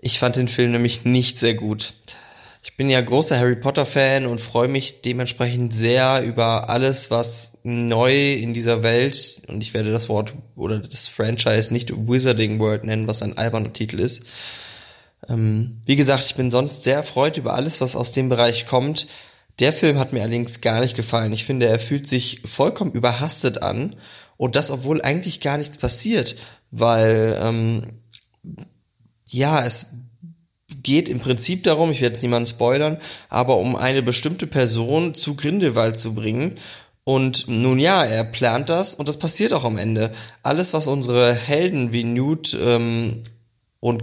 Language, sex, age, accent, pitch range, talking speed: German, male, 20-39, German, 115-140 Hz, 165 wpm